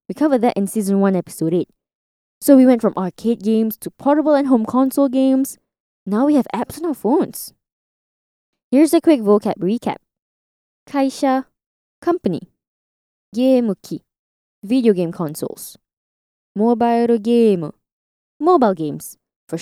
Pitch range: 195-275 Hz